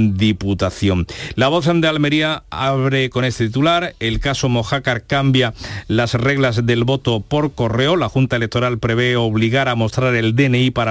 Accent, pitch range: Spanish, 110-130 Hz